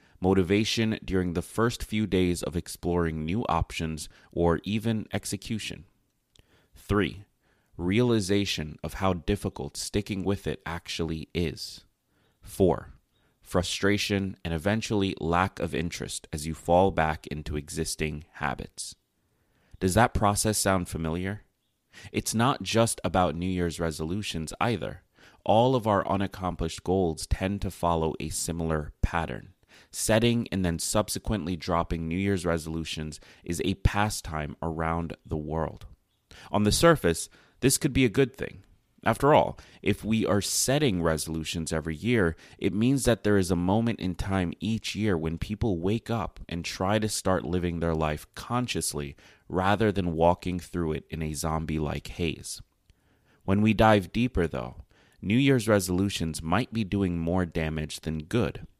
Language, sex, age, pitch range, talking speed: English, male, 30-49, 80-105 Hz, 145 wpm